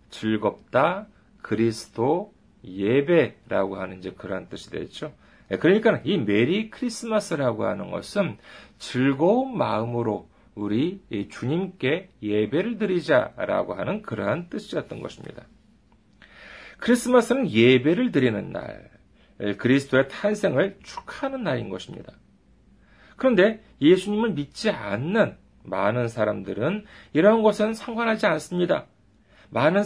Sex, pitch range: male, 130-220 Hz